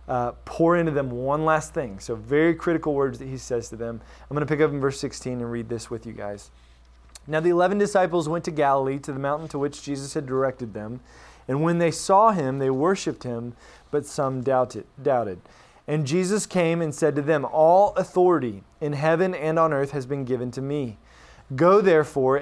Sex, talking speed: male, 210 wpm